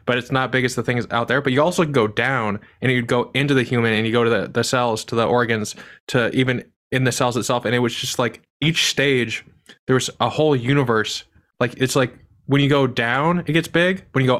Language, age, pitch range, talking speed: English, 20-39, 115-140 Hz, 260 wpm